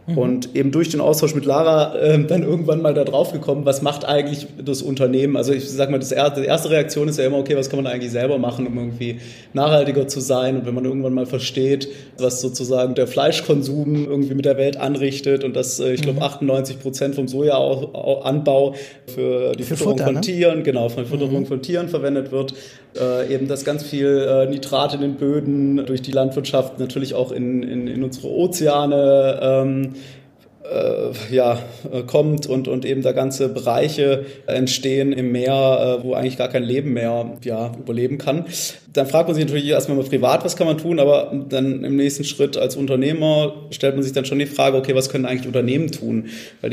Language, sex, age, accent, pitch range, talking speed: German, male, 30-49, German, 130-145 Hz, 200 wpm